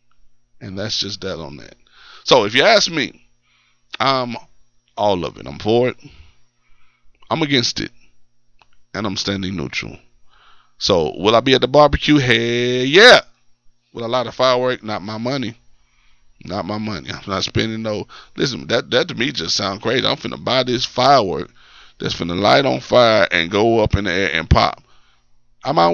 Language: English